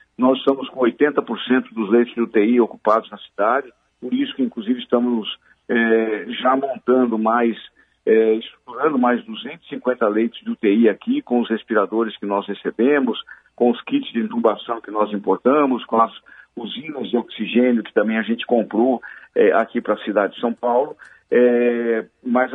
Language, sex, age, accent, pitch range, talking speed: Portuguese, male, 50-69, Brazilian, 115-145 Hz, 155 wpm